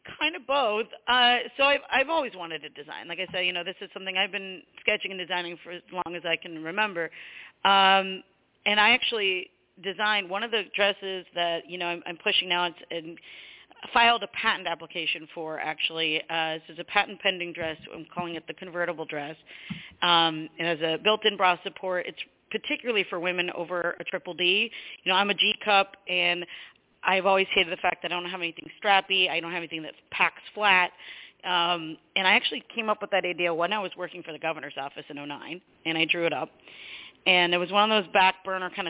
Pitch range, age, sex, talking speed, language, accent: 170-205 Hz, 40-59, female, 220 wpm, English, American